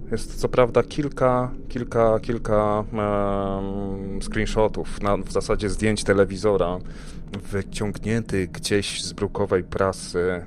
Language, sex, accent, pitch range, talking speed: Polish, male, native, 90-110 Hz, 90 wpm